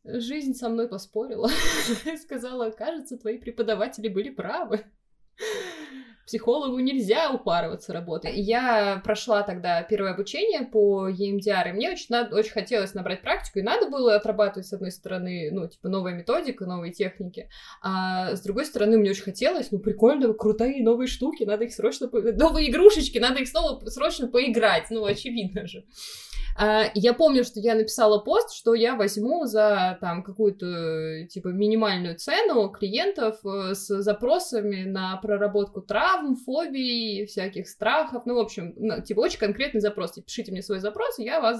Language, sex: Russian, female